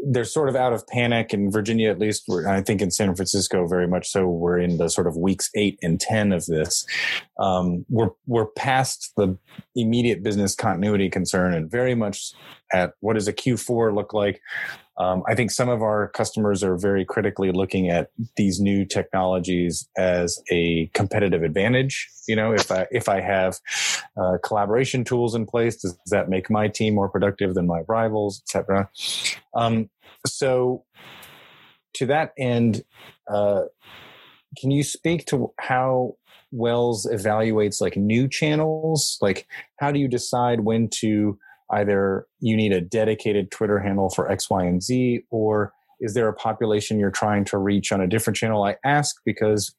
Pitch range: 95-120 Hz